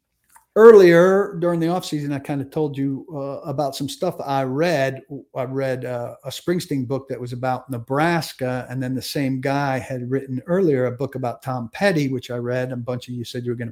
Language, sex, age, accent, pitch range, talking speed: English, male, 50-69, American, 125-150 Hz, 220 wpm